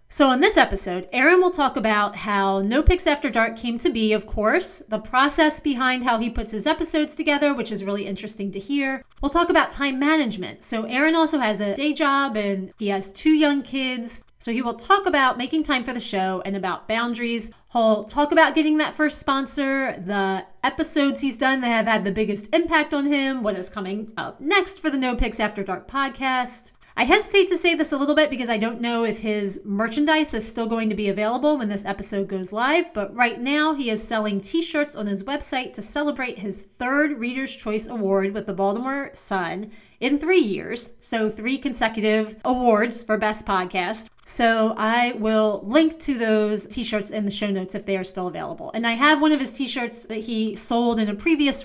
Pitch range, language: 210-285 Hz, English